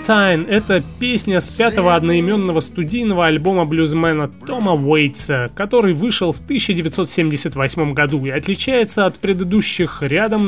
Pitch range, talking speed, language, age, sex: 150-200 Hz, 120 wpm, Russian, 20-39, male